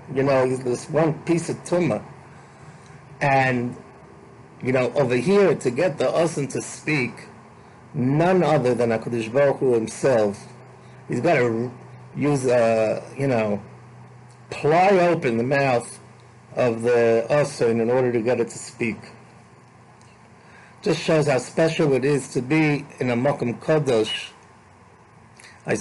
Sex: male